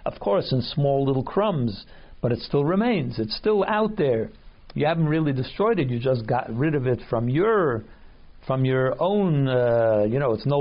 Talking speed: 200 wpm